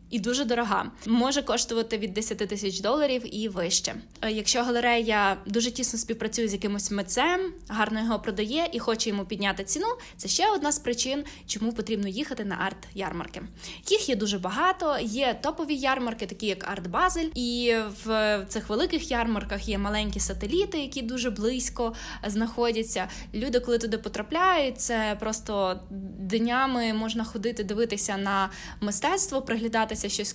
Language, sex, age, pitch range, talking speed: Ukrainian, female, 10-29, 205-250 Hz, 145 wpm